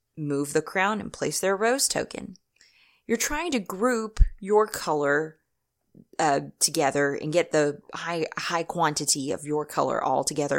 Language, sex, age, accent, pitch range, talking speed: English, female, 20-39, American, 155-185 Hz, 155 wpm